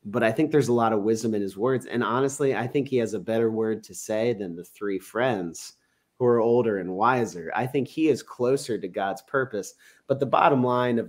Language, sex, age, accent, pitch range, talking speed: English, male, 30-49, American, 110-135 Hz, 240 wpm